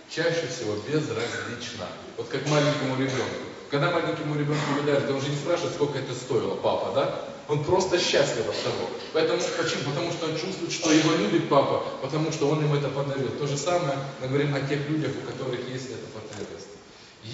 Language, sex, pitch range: Russian, male, 135-165 Hz